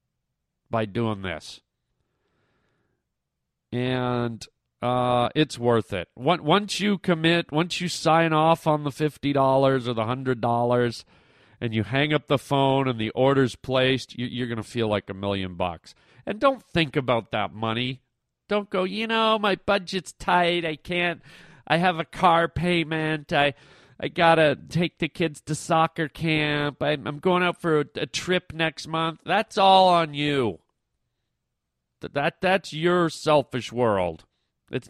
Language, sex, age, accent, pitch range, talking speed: English, male, 40-59, American, 120-170 Hz, 150 wpm